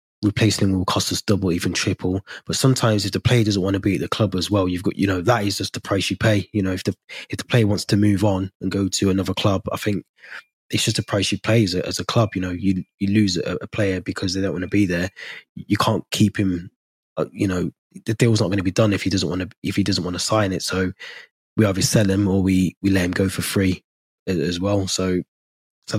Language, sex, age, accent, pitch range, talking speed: English, male, 20-39, British, 95-105 Hz, 270 wpm